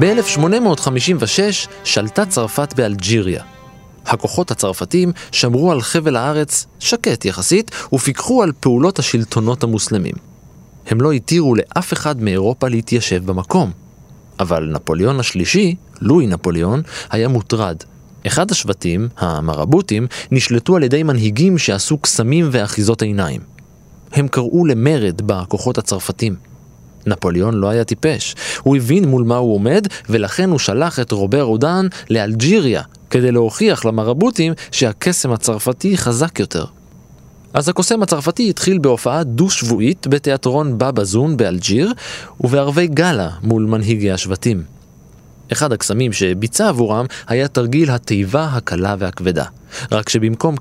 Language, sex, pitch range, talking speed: Hebrew, male, 105-155 Hz, 115 wpm